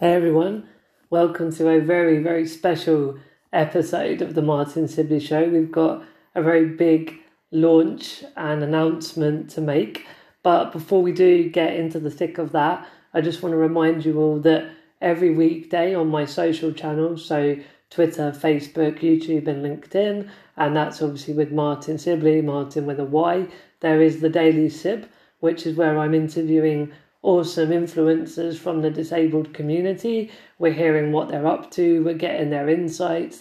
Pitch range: 155-170 Hz